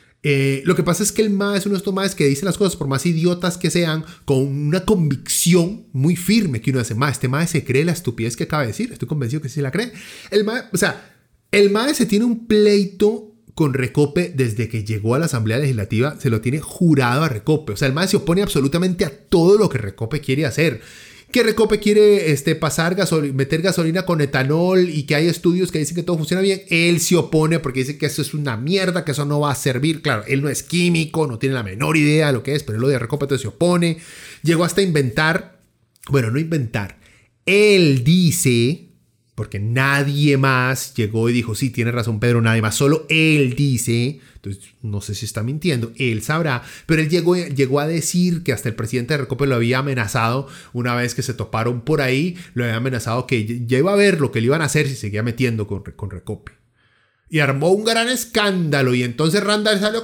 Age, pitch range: 30-49, 125-175 Hz